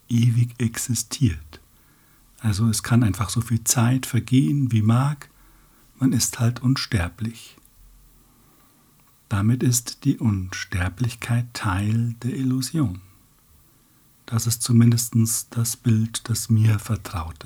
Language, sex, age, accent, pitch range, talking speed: German, male, 60-79, German, 105-130 Hz, 105 wpm